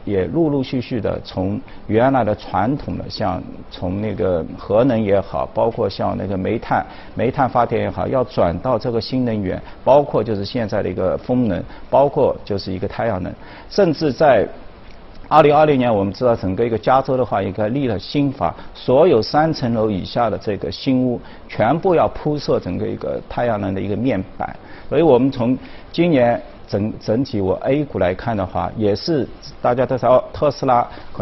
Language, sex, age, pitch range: Chinese, male, 50-69, 100-130 Hz